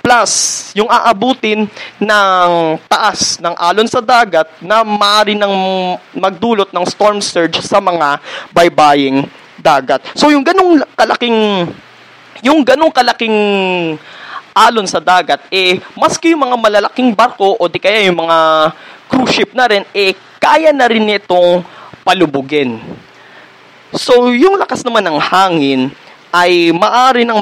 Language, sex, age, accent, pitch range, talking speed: Filipino, male, 20-39, native, 170-220 Hz, 125 wpm